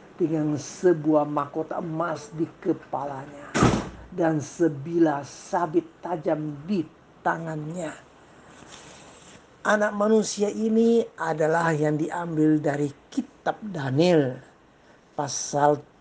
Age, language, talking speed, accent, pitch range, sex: 60-79, Indonesian, 80 wpm, native, 150-175 Hz, male